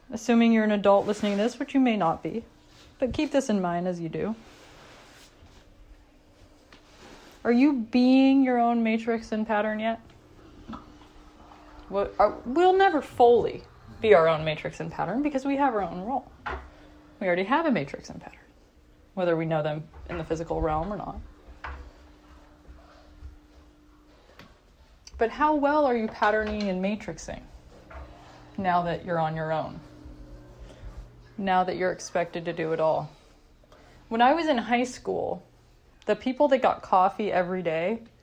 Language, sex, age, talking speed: English, female, 20-39, 150 wpm